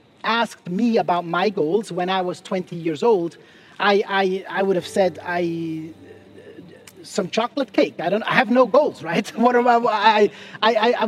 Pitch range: 180-235 Hz